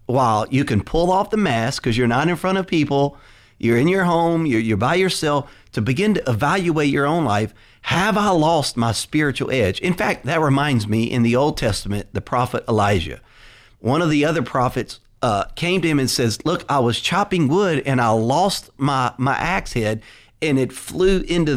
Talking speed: 205 wpm